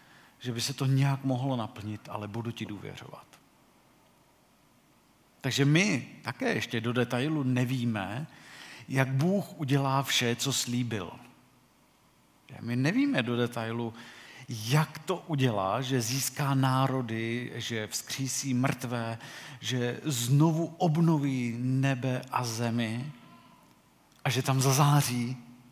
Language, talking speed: Czech, 110 wpm